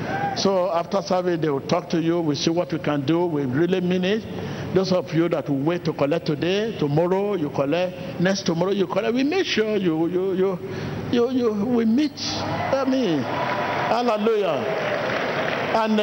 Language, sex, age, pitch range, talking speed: English, male, 60-79, 145-190 Hz, 185 wpm